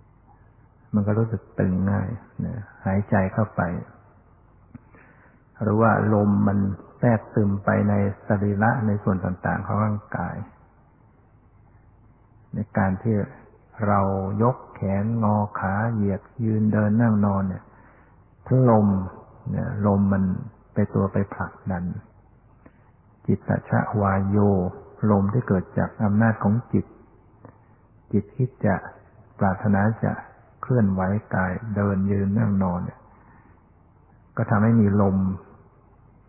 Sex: male